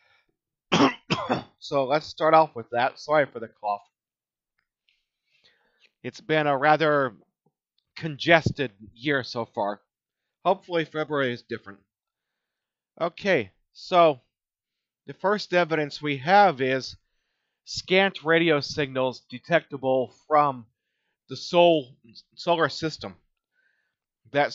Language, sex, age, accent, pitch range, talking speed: English, male, 40-59, American, 135-170 Hz, 95 wpm